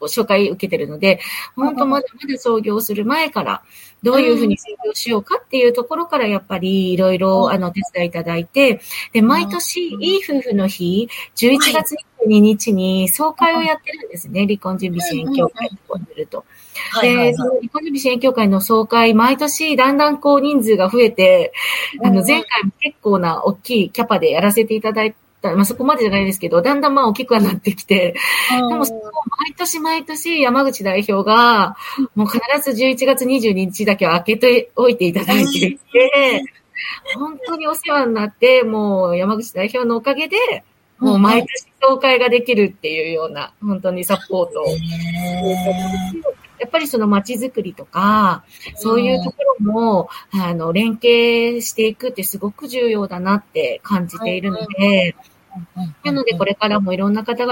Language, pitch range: Japanese, 195-265 Hz